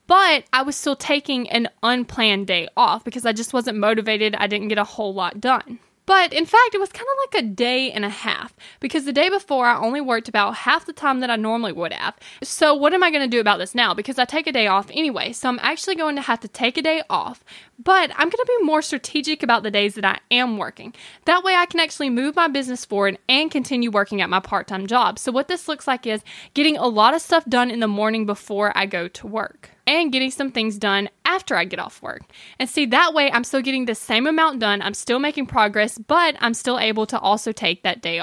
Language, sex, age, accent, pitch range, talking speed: English, female, 10-29, American, 215-295 Hz, 255 wpm